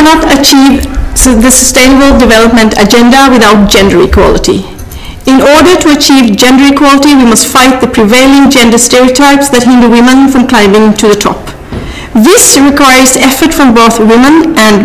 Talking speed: 155 wpm